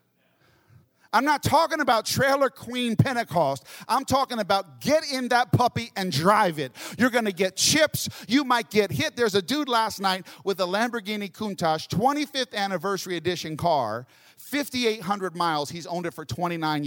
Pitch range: 155-260 Hz